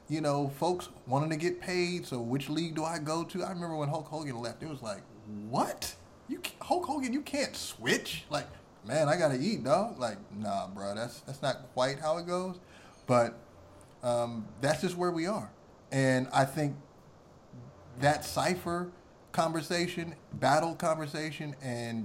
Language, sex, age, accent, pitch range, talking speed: English, male, 30-49, American, 125-175 Hz, 175 wpm